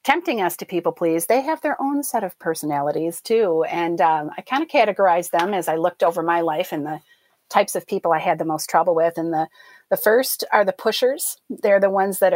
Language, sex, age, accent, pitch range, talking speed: English, female, 40-59, American, 175-230 Hz, 235 wpm